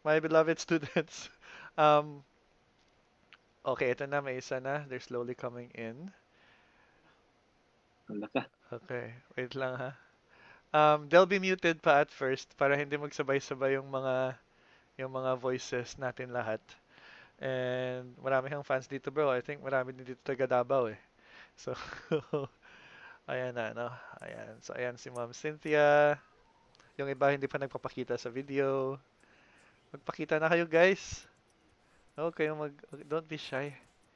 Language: Filipino